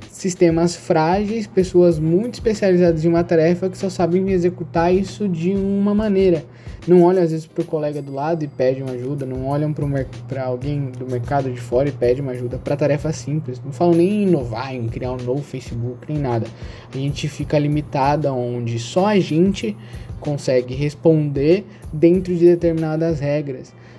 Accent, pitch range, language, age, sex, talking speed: Brazilian, 130-165 Hz, Portuguese, 10-29, male, 180 wpm